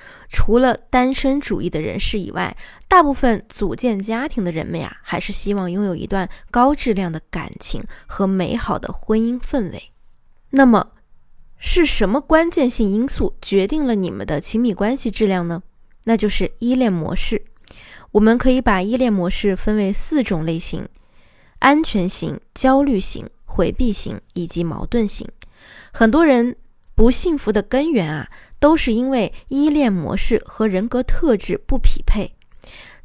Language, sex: Chinese, female